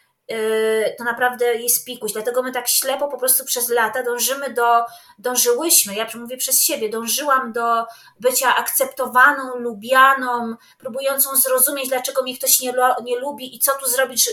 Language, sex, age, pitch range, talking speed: Polish, female, 20-39, 240-290 Hz, 150 wpm